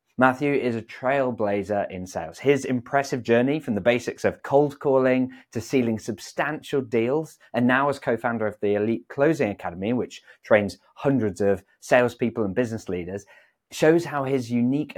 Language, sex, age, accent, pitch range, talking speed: English, male, 20-39, British, 105-125 Hz, 160 wpm